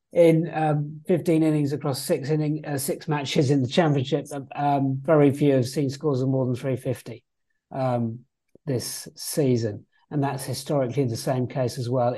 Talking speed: 170 wpm